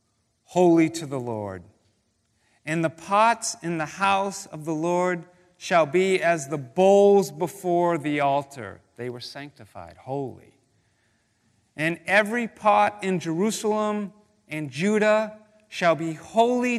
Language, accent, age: English, American, 40-59